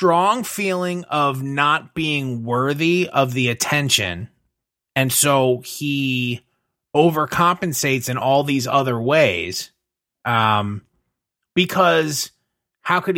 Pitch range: 125-175 Hz